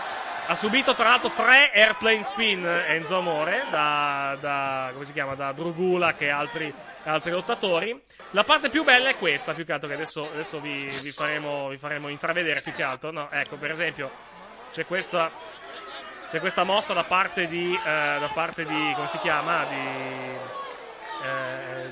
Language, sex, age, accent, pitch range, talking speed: Italian, male, 20-39, native, 155-220 Hz, 170 wpm